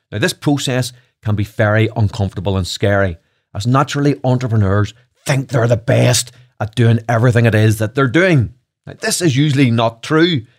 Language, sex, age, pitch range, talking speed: English, male, 30-49, 115-140 Hz, 165 wpm